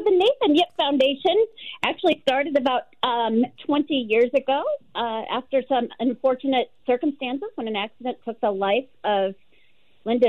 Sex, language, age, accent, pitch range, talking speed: female, English, 40-59, American, 205-265 Hz, 140 wpm